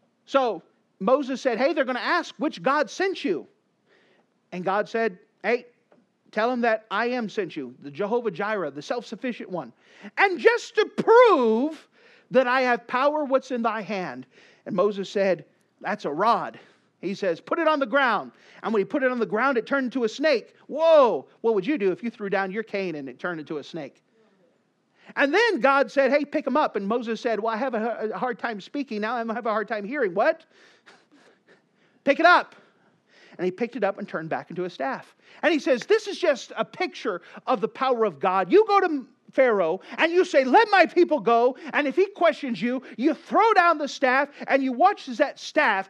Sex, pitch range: male, 215-300 Hz